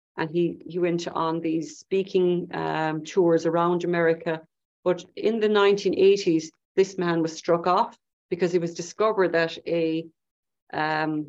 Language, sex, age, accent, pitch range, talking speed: English, female, 40-59, Irish, 160-185 Hz, 145 wpm